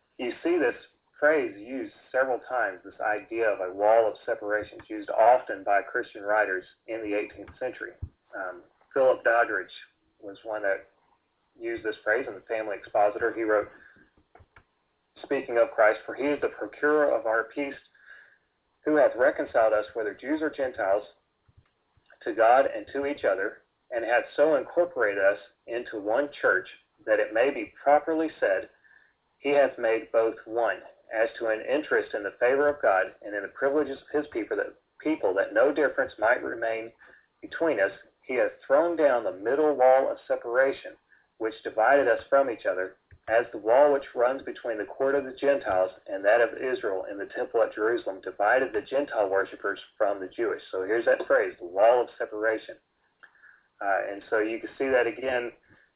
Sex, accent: male, American